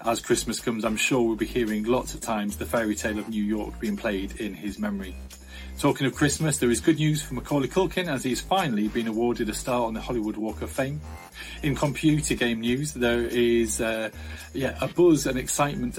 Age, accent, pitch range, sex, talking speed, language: 30-49, British, 105-130 Hz, male, 215 wpm, English